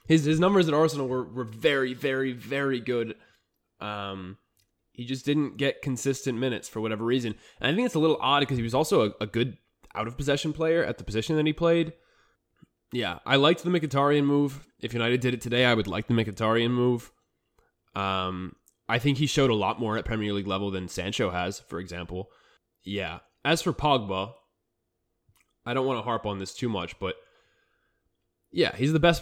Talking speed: 195 wpm